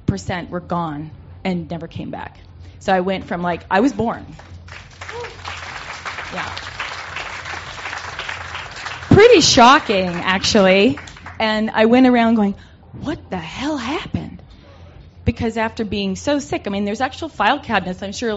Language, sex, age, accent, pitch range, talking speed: English, female, 20-39, American, 160-205 Hz, 135 wpm